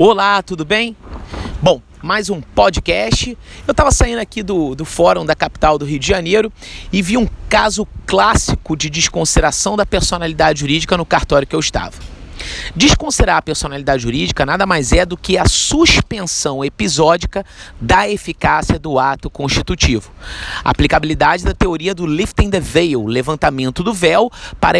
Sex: male